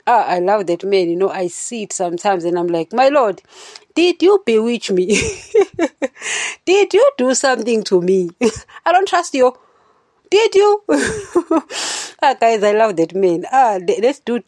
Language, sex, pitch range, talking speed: English, female, 185-250 Hz, 170 wpm